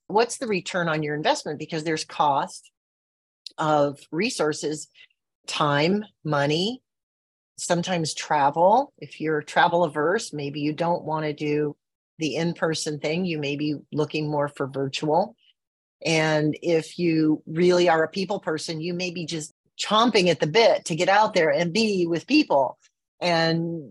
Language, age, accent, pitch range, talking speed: English, 40-59, American, 150-175 Hz, 155 wpm